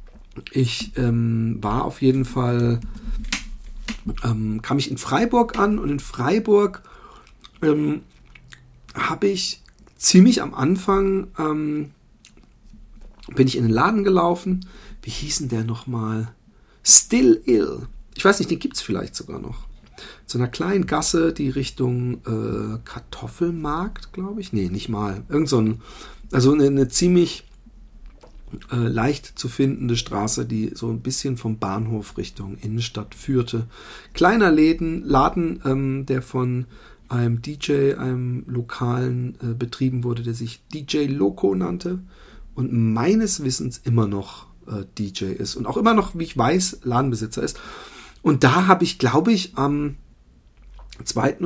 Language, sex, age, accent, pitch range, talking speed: German, male, 40-59, German, 115-155 Hz, 140 wpm